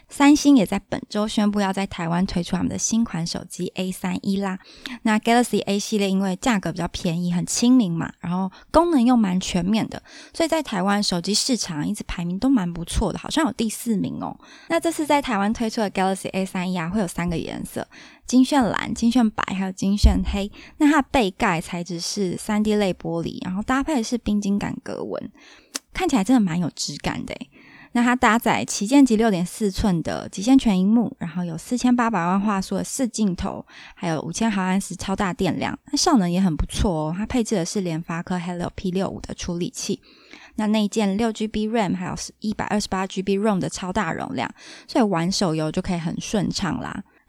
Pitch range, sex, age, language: 185-240 Hz, female, 20-39, Chinese